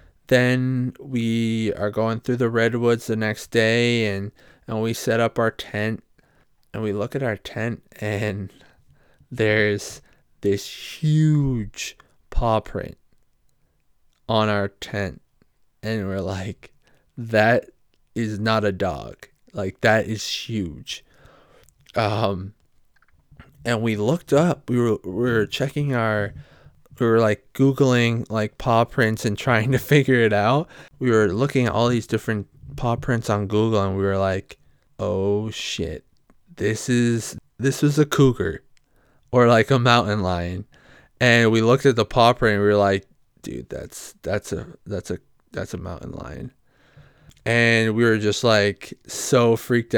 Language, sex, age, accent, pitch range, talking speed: English, male, 20-39, American, 105-125 Hz, 150 wpm